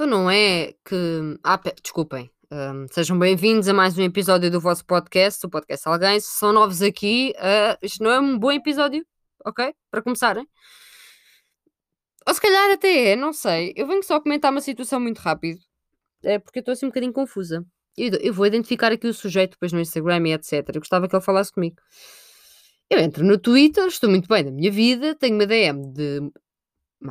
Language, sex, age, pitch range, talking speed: Portuguese, female, 20-39, 175-255 Hz, 195 wpm